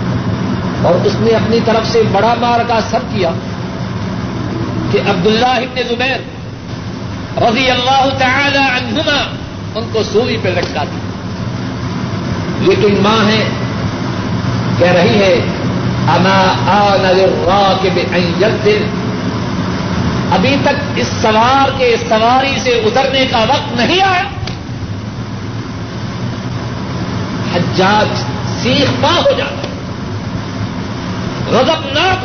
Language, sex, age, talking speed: Urdu, male, 60-79, 105 wpm